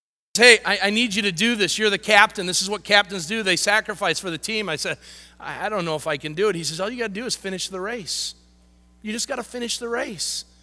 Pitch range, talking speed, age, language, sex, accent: 175-240 Hz, 275 wpm, 40-59, English, male, American